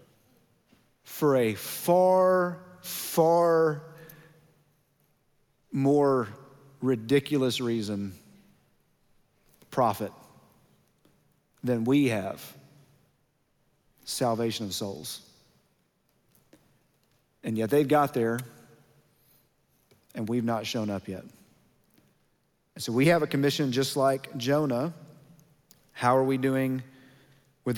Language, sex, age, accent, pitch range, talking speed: English, male, 40-59, American, 120-145 Hz, 85 wpm